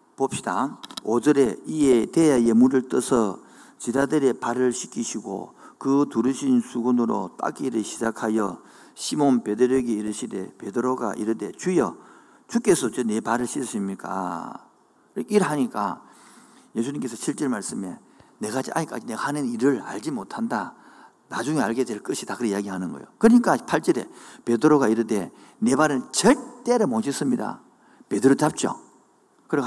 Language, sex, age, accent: Korean, male, 50-69, native